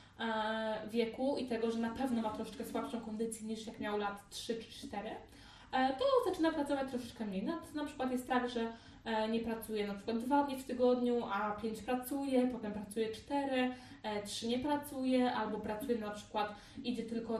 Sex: female